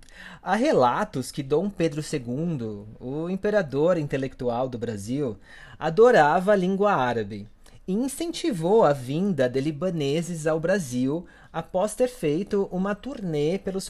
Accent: Brazilian